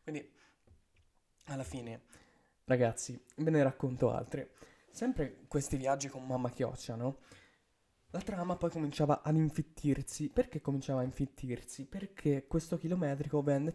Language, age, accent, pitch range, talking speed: Italian, 20-39, native, 140-170 Hz, 125 wpm